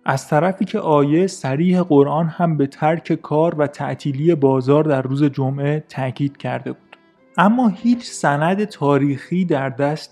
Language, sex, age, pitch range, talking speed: Persian, male, 30-49, 135-165 Hz, 150 wpm